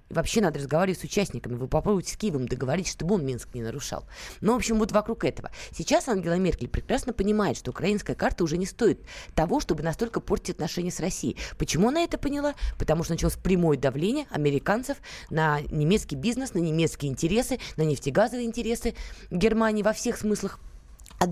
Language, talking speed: Russian, 175 wpm